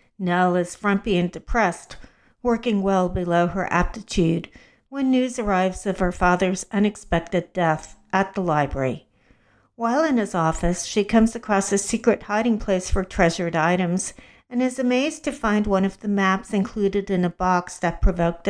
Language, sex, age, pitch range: English, female, 60-79, 180-225 Hz